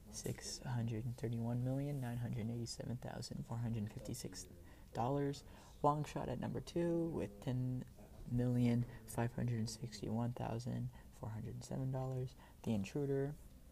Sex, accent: male, American